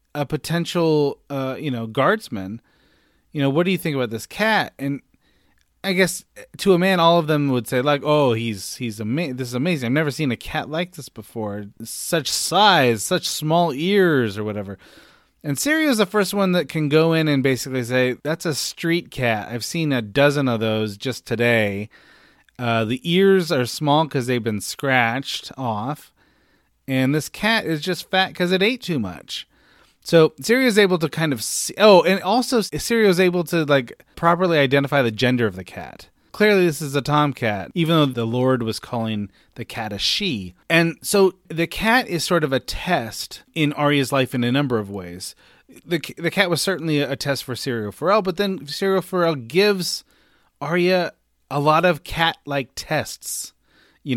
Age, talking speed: 30-49, 195 wpm